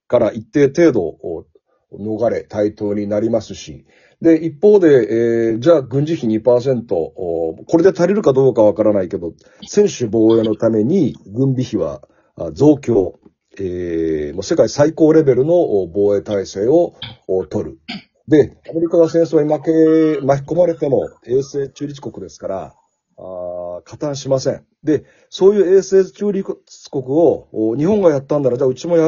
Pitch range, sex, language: 110-165 Hz, male, Japanese